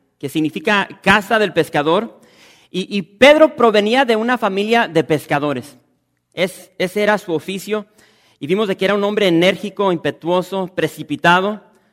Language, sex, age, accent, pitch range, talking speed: English, male, 40-59, Mexican, 125-190 Hz, 145 wpm